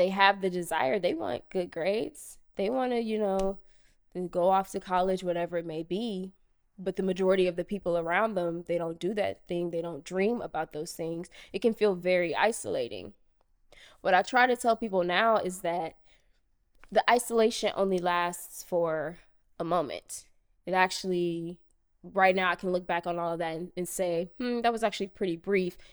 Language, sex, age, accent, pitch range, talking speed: English, female, 20-39, American, 180-230 Hz, 185 wpm